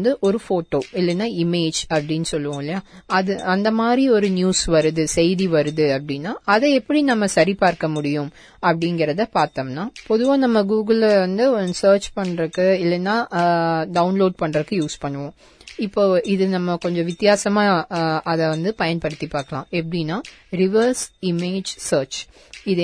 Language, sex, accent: Tamil, female, native